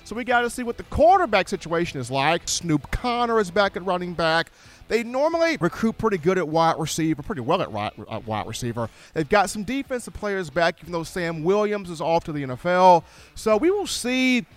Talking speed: 205 wpm